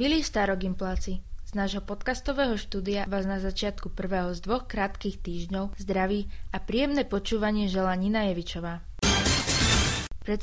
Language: Slovak